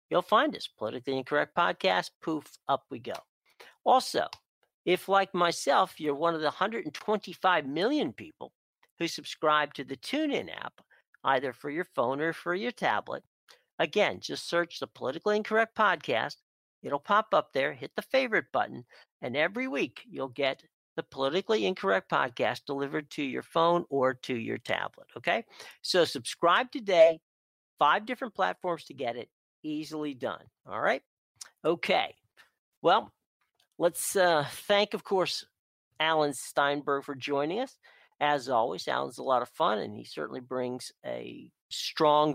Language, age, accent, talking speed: English, 50-69, American, 150 wpm